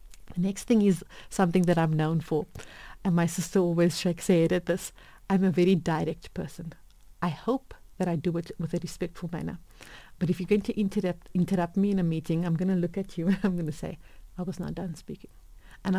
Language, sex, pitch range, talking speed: English, female, 170-195 Hz, 225 wpm